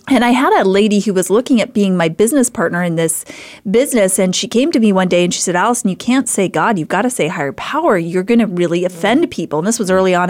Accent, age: American, 30-49